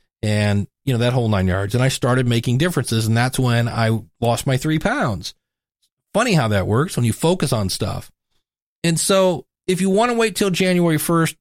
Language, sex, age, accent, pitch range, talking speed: English, male, 40-59, American, 120-170 Hz, 205 wpm